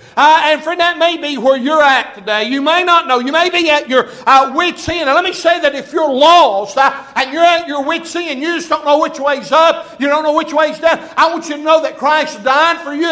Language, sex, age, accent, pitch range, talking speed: English, male, 60-79, American, 250-310 Hz, 270 wpm